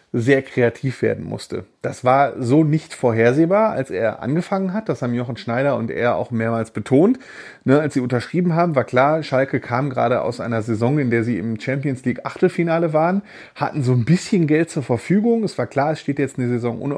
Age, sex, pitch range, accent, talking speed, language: 30-49, male, 115-150 Hz, German, 200 wpm, German